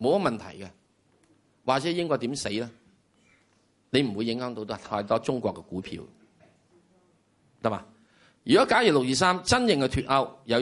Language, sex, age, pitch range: Chinese, male, 30-49, 100-145 Hz